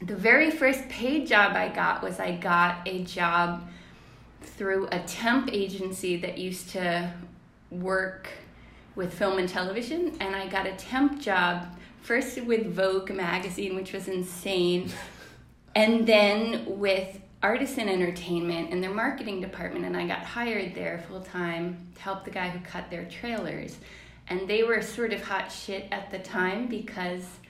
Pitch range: 170-200 Hz